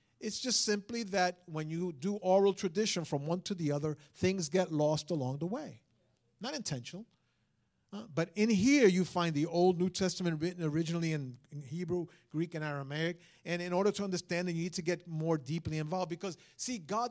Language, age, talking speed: English, 50-69, 190 wpm